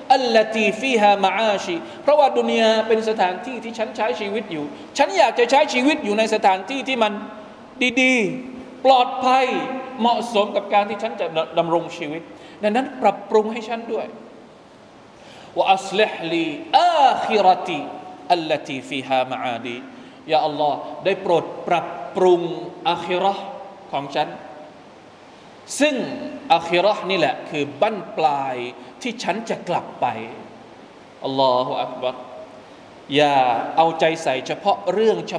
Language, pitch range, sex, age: Thai, 180-265 Hz, male, 20-39